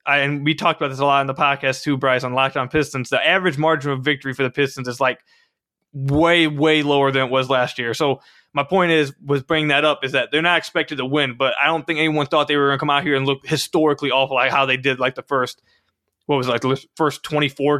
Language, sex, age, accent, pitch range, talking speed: English, male, 20-39, American, 135-165 Hz, 265 wpm